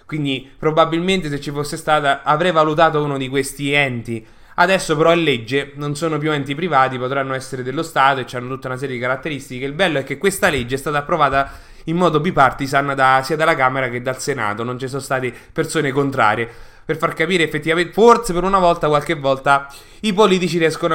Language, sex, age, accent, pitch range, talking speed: Italian, male, 20-39, native, 130-165 Hz, 200 wpm